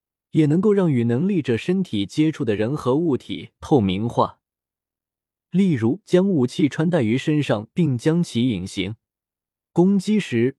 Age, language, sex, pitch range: 20-39, Chinese, male, 115-170 Hz